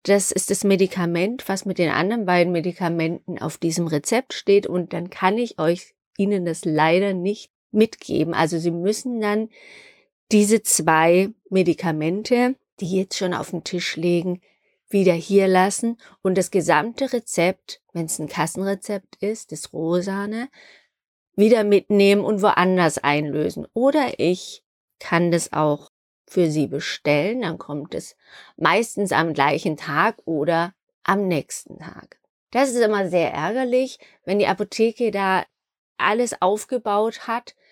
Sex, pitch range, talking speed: female, 170-215 Hz, 140 wpm